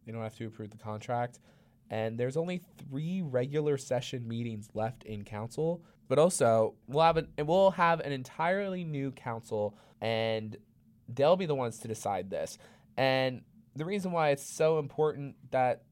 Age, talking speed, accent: 20-39, 160 wpm, American